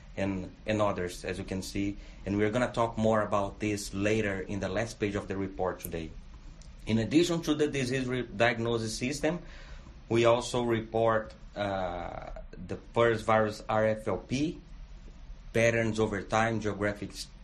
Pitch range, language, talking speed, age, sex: 100-115 Hz, English, 145 wpm, 30-49, male